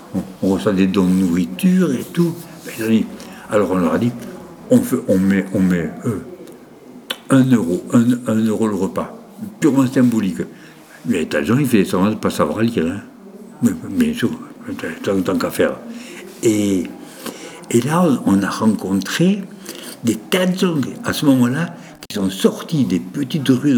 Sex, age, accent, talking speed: male, 60-79, French, 140 wpm